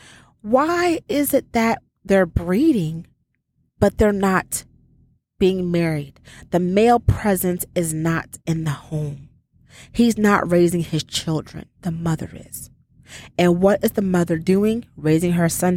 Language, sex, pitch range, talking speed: English, female, 145-190 Hz, 135 wpm